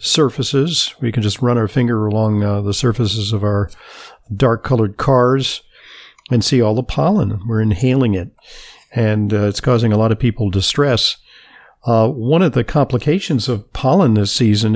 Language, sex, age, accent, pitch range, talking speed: English, male, 50-69, American, 105-130 Hz, 170 wpm